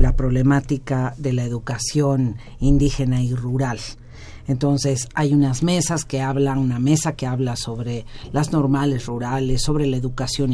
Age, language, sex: 50-69, Spanish, female